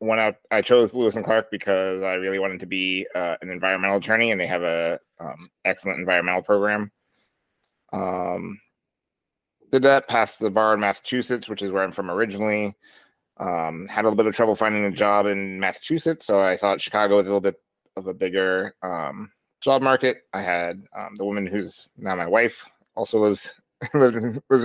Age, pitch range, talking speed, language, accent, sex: 30-49, 95-110 Hz, 185 wpm, English, American, male